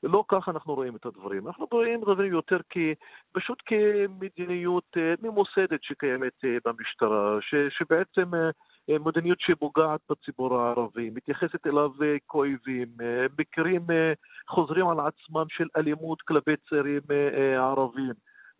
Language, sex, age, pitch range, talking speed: Hebrew, male, 40-59, 140-185 Hz, 115 wpm